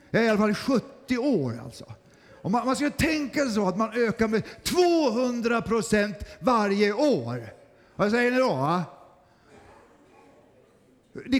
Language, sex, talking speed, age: Swedish, male, 135 wpm, 50-69